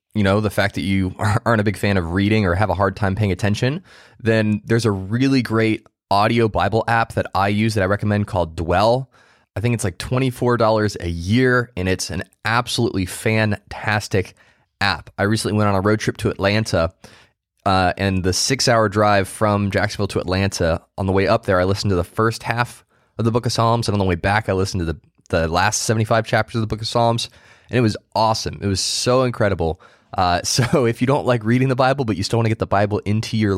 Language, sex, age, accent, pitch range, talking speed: English, male, 20-39, American, 100-125 Hz, 225 wpm